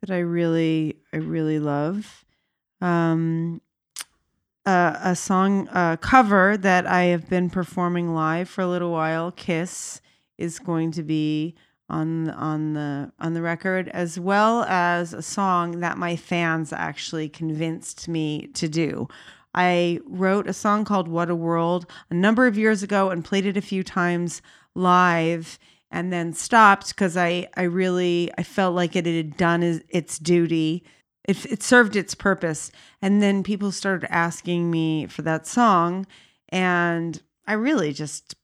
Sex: female